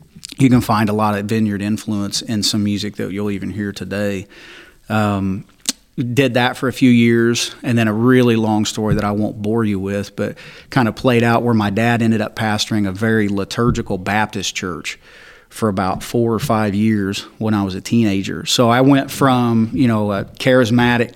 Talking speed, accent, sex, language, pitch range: 200 wpm, American, male, English, 105-120 Hz